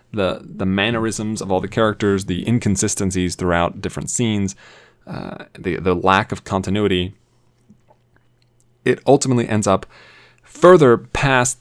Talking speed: 125 wpm